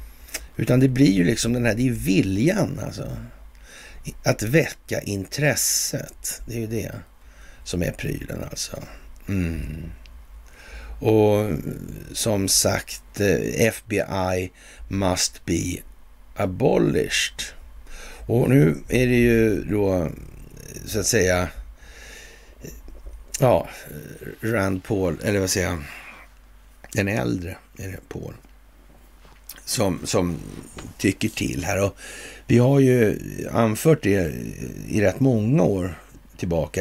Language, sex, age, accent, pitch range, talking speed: Swedish, male, 60-79, native, 85-115 Hz, 110 wpm